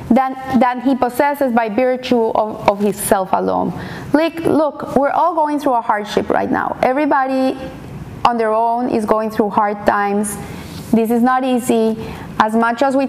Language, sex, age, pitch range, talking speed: English, female, 30-49, 220-260 Hz, 165 wpm